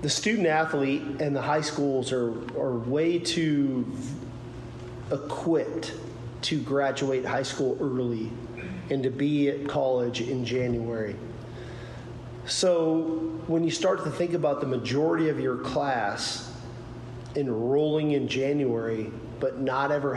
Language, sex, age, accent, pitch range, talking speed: English, male, 40-59, American, 120-145 Hz, 125 wpm